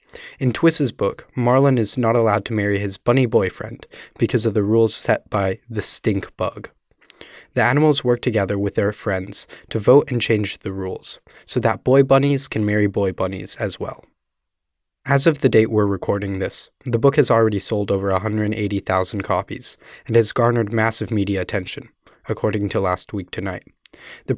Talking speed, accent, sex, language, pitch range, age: 175 wpm, American, male, English, 100-125 Hz, 20-39